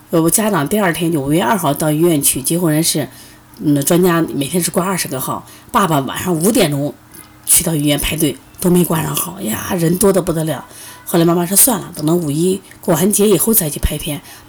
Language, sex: Chinese, female